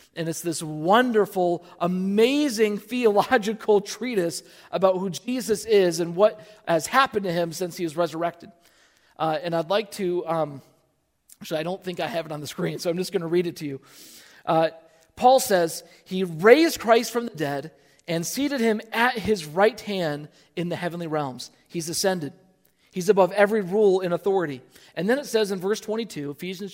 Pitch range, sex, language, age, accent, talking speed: 160-210 Hz, male, English, 40-59, American, 185 wpm